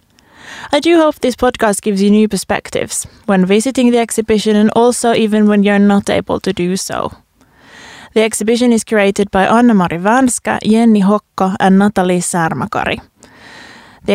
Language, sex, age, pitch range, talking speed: Finnish, female, 20-39, 190-225 Hz, 155 wpm